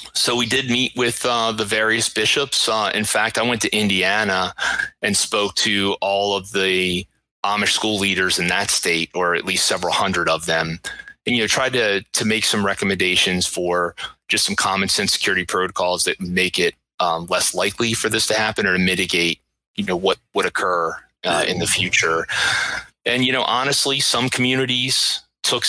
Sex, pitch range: male, 85-110 Hz